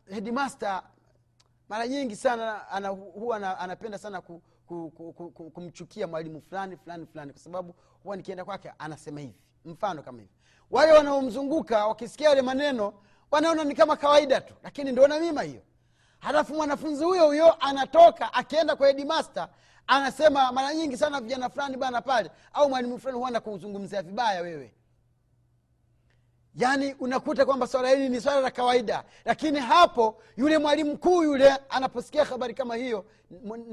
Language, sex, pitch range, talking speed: Swahili, male, 170-275 Hz, 155 wpm